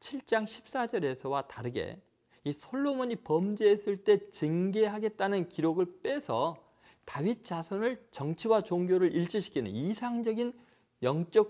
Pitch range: 140-215 Hz